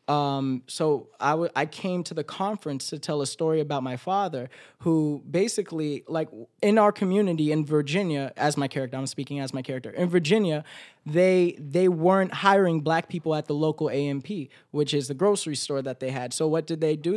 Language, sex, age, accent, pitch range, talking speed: English, male, 20-39, American, 145-180 Hz, 200 wpm